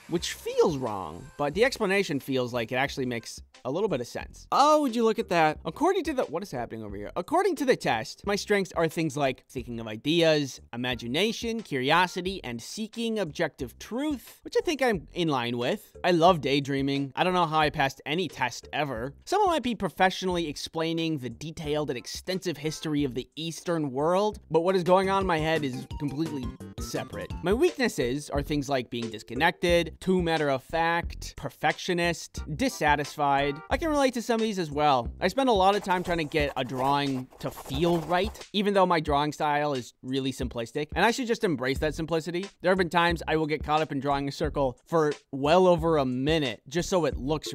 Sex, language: male, English